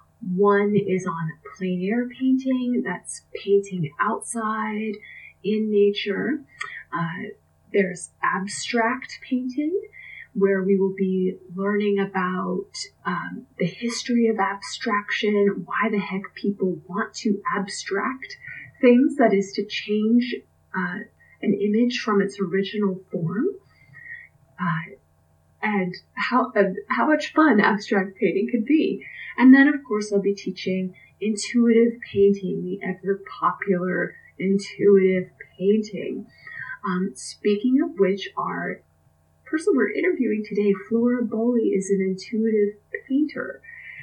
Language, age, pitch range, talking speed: English, 30-49, 195-240 Hz, 115 wpm